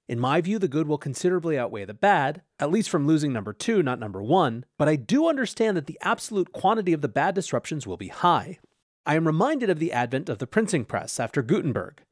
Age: 30-49